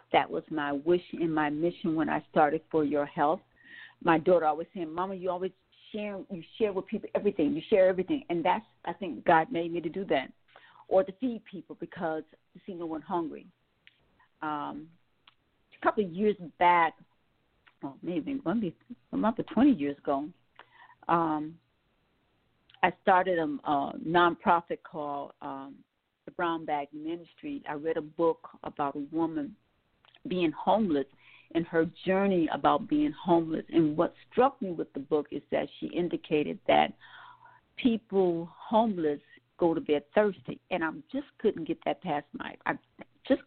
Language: English